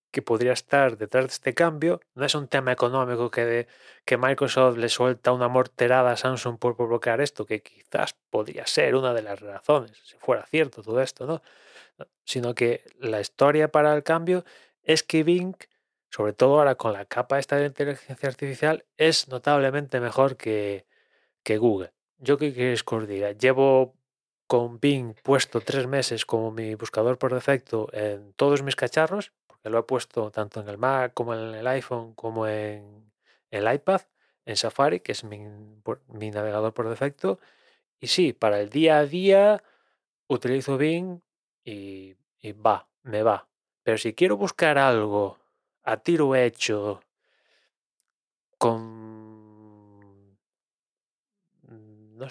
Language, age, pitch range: Spanish, 20-39, 110-145 Hz